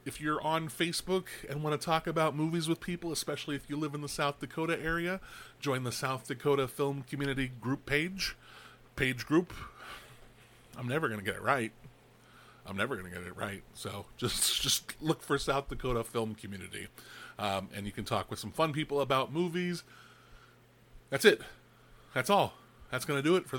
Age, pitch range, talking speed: 30-49, 120-165 Hz, 190 wpm